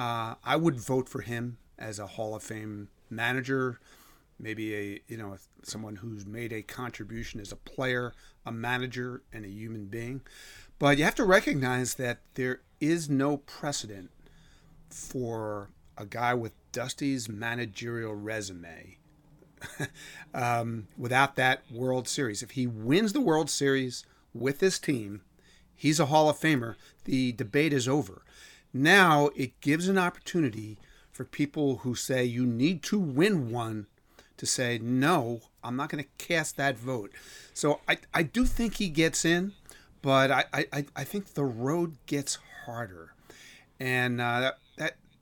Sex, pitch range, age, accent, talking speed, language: male, 115-145 Hz, 40-59, American, 150 wpm, English